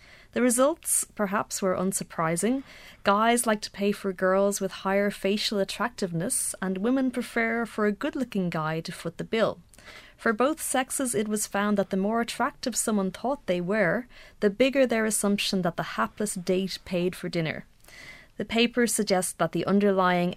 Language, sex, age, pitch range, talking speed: English, female, 30-49, 185-220 Hz, 170 wpm